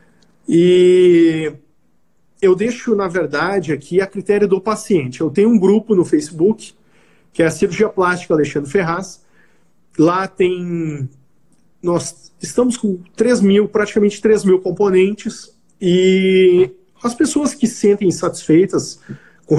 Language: Portuguese